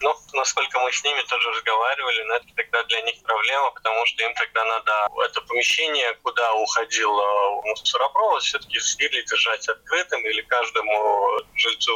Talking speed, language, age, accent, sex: 145 wpm, Russian, 20-39, native, male